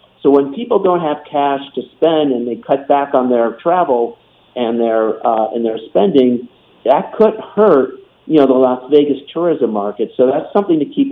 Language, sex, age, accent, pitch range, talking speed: English, male, 50-69, American, 120-150 Hz, 195 wpm